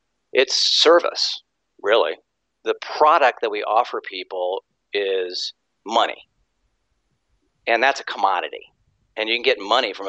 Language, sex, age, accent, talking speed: English, male, 50-69, American, 125 wpm